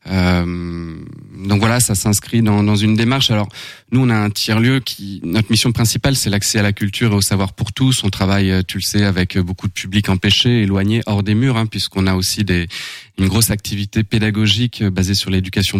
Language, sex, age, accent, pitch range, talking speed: French, male, 20-39, French, 95-115 Hz, 215 wpm